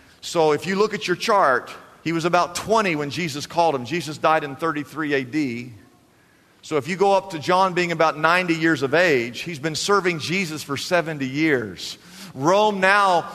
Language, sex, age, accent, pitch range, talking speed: English, male, 50-69, American, 165-240 Hz, 190 wpm